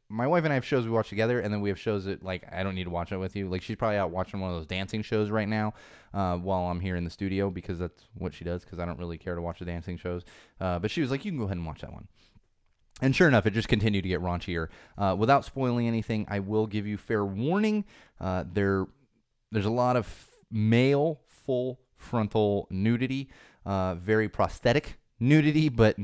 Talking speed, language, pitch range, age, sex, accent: 240 wpm, English, 95-120 Hz, 20-39, male, American